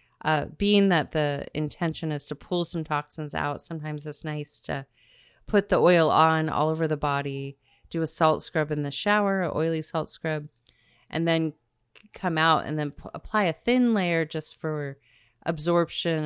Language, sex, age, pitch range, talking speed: English, female, 30-49, 145-170 Hz, 170 wpm